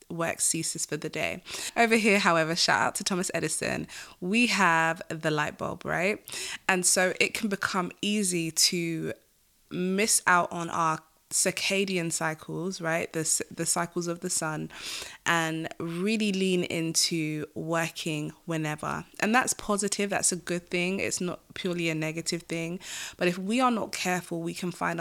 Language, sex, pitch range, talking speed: English, female, 160-185 Hz, 160 wpm